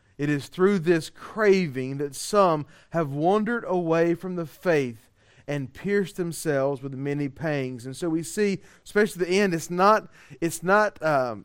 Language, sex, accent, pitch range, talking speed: English, male, American, 160-225 Hz, 160 wpm